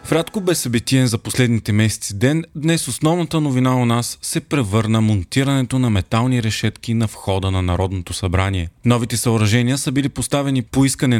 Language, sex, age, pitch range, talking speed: Bulgarian, male, 30-49, 110-140 Hz, 160 wpm